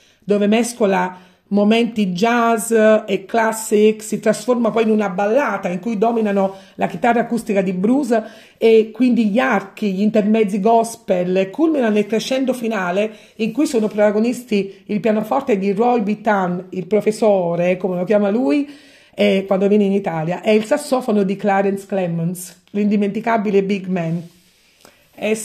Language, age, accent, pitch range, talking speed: Italian, 40-59, native, 195-230 Hz, 140 wpm